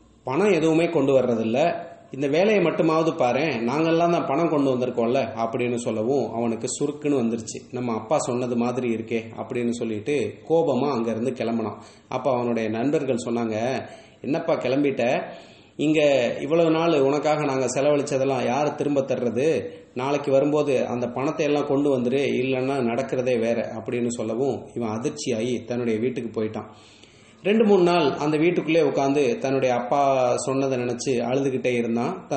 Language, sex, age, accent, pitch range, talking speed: English, male, 30-49, Indian, 115-140 Hz, 140 wpm